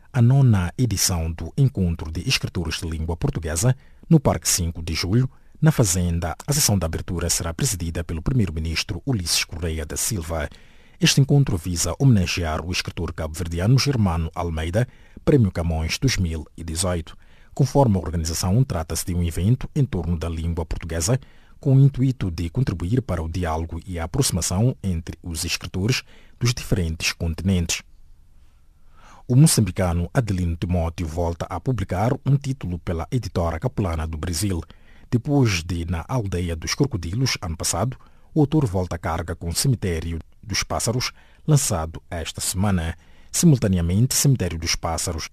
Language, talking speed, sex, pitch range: English, 145 wpm, male, 85-120 Hz